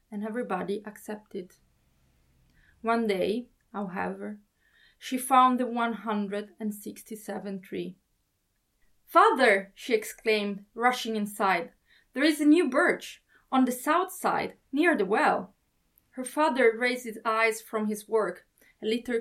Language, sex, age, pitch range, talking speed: English, female, 20-39, 210-250 Hz, 130 wpm